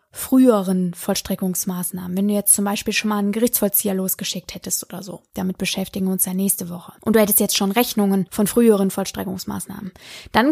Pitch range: 200-250 Hz